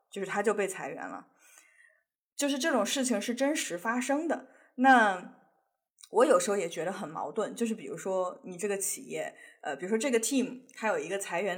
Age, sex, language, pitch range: 20-39, female, Chinese, 190-250 Hz